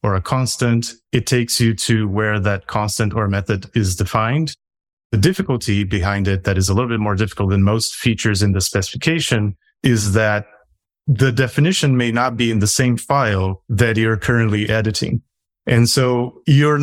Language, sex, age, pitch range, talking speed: English, male, 30-49, 105-125 Hz, 175 wpm